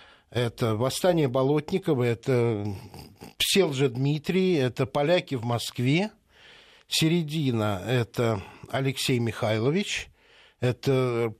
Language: Russian